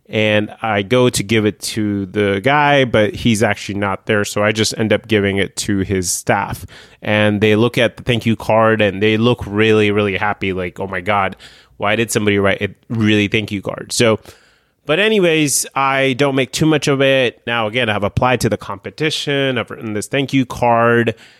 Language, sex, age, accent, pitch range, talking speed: English, male, 30-49, American, 105-135 Hz, 210 wpm